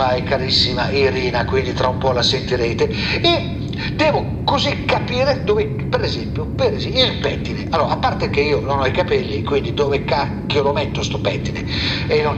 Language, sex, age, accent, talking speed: Italian, male, 50-69, native, 185 wpm